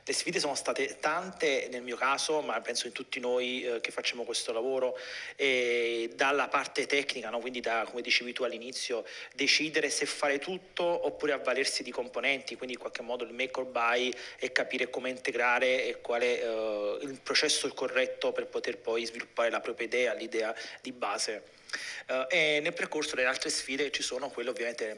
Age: 30-49